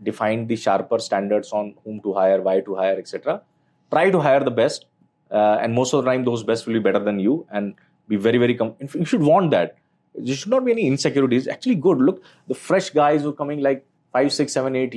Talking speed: 235 wpm